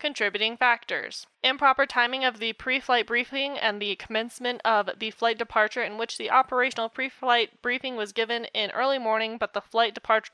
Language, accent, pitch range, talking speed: English, American, 205-245 Hz, 175 wpm